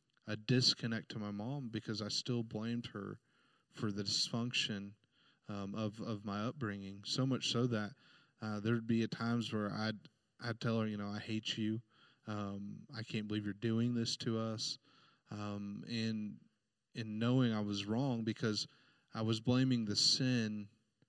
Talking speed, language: 165 wpm, English